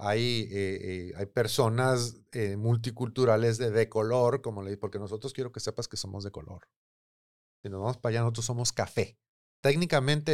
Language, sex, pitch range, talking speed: Spanish, male, 110-150 Hz, 180 wpm